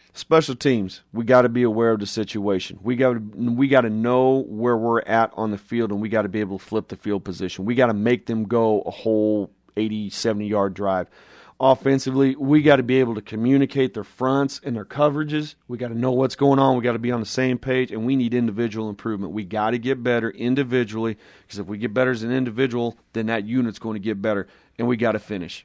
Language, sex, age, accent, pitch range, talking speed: English, male, 30-49, American, 110-125 Hz, 240 wpm